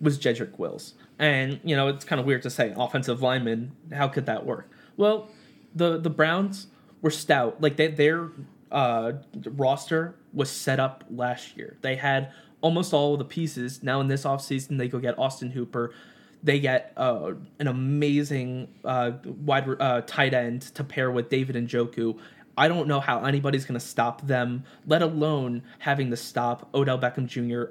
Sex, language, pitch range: male, English, 125-145 Hz